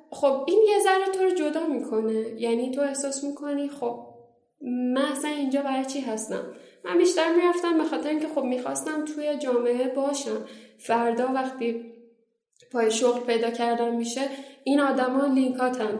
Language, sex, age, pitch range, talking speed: Persian, female, 10-29, 240-300 Hz, 155 wpm